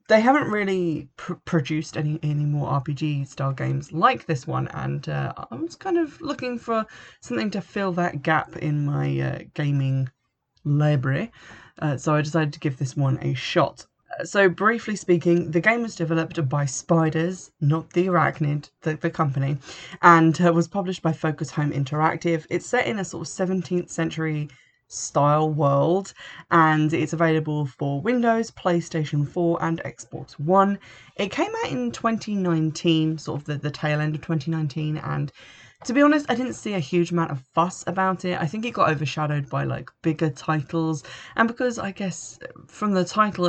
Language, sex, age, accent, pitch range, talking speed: English, female, 20-39, British, 150-185 Hz, 175 wpm